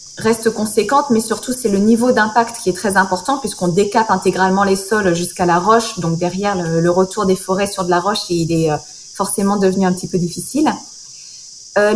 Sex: female